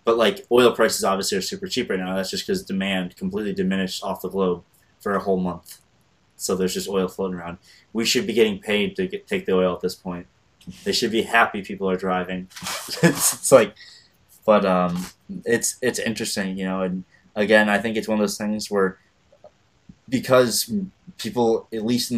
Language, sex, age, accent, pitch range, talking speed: English, male, 20-39, American, 95-130 Hz, 200 wpm